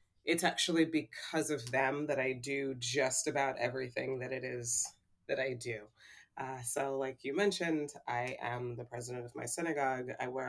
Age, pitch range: 20-39, 125-150 Hz